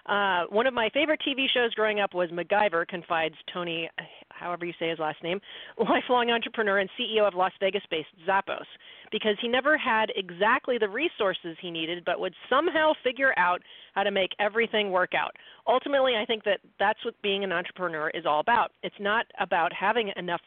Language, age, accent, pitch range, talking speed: English, 40-59, American, 180-235 Hz, 190 wpm